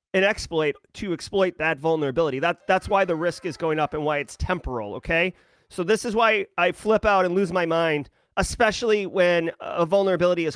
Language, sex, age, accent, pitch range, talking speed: English, male, 30-49, American, 155-195 Hz, 200 wpm